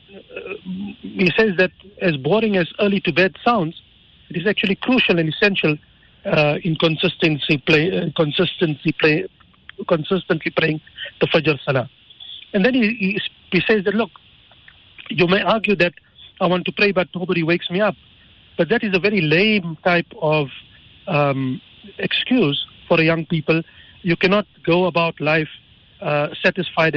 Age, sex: 50-69, male